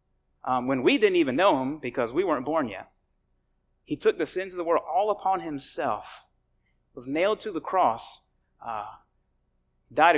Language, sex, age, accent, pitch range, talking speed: English, male, 30-49, American, 125-190 Hz, 170 wpm